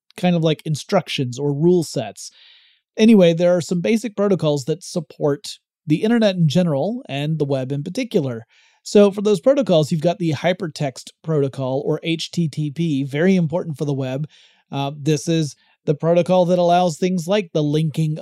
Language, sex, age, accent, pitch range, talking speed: English, male, 30-49, American, 145-175 Hz, 170 wpm